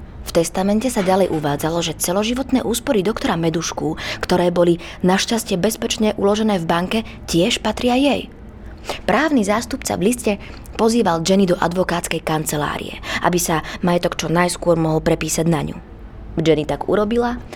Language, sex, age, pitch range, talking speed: Slovak, female, 20-39, 160-210 Hz, 140 wpm